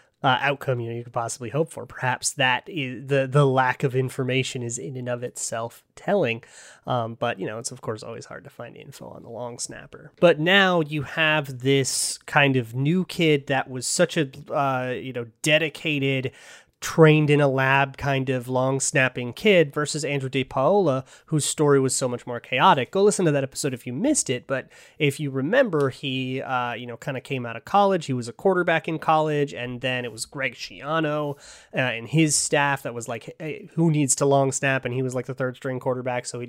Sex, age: male, 30-49